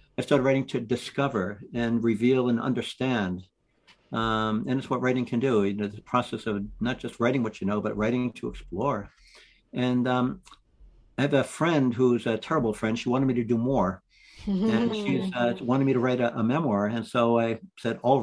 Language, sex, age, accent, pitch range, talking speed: English, male, 60-79, American, 115-140 Hz, 200 wpm